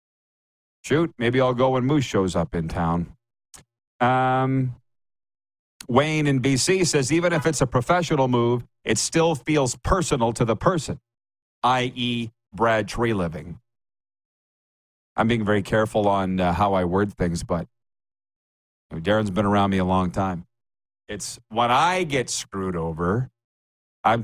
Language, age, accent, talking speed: English, 40-59, American, 140 wpm